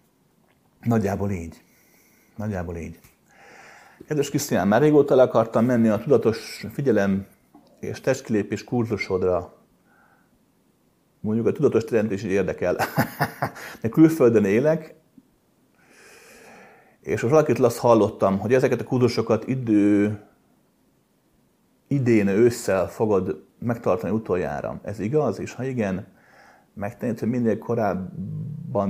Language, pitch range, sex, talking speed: Hungarian, 100-135 Hz, male, 100 wpm